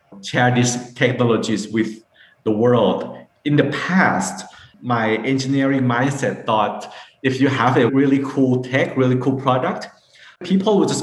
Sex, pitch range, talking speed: male, 115-135 Hz, 140 wpm